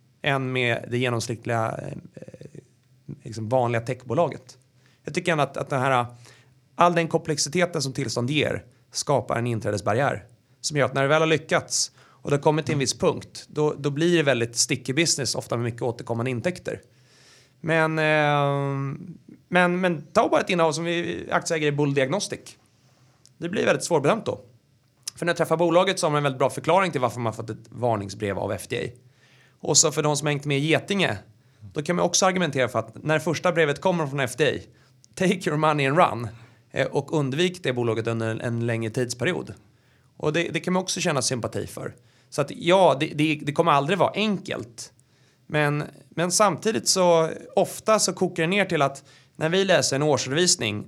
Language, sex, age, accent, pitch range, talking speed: Swedish, male, 30-49, native, 125-165 Hz, 190 wpm